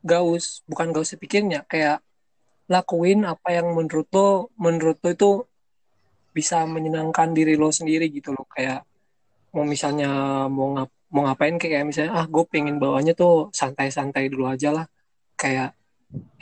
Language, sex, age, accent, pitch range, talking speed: Indonesian, male, 20-39, native, 150-170 Hz, 145 wpm